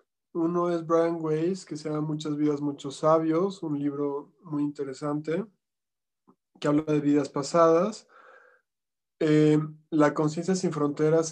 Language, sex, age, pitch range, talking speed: Spanish, male, 20-39, 145-175 Hz, 135 wpm